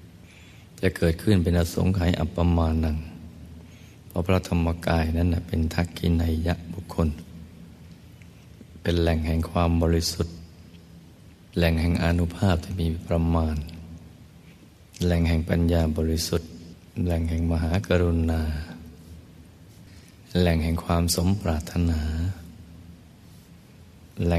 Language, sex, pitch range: Thai, male, 80-90 Hz